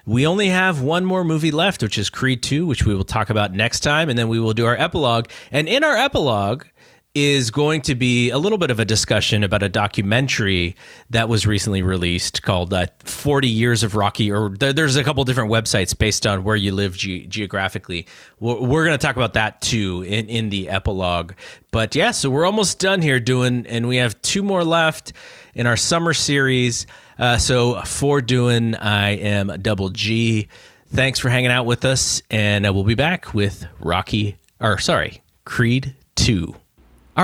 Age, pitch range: 30-49, 100-135 Hz